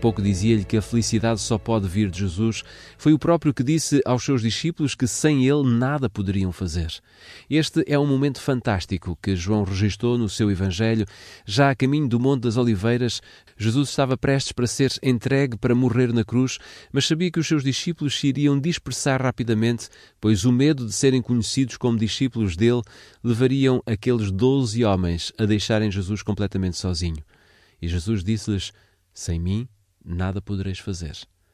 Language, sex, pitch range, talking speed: Portuguese, male, 95-125 Hz, 165 wpm